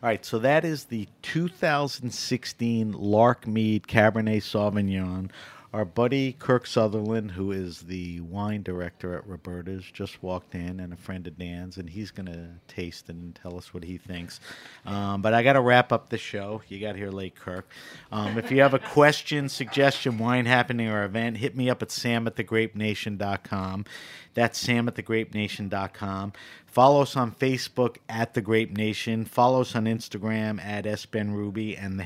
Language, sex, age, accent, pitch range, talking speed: English, male, 50-69, American, 95-115 Hz, 170 wpm